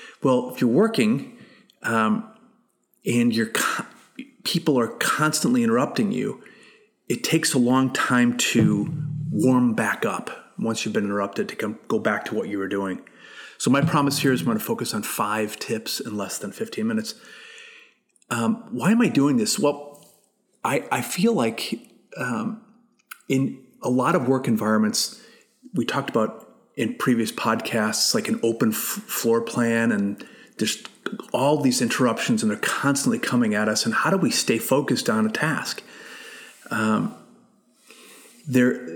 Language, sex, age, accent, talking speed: English, male, 30-49, American, 155 wpm